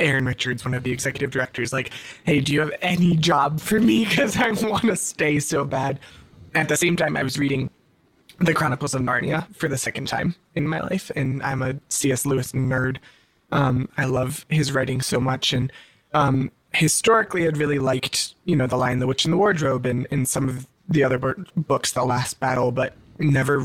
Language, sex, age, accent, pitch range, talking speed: English, male, 20-39, American, 125-150 Hz, 205 wpm